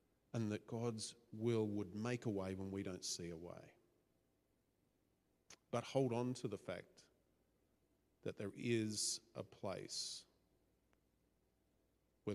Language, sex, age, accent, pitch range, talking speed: English, male, 40-59, Australian, 90-110 Hz, 125 wpm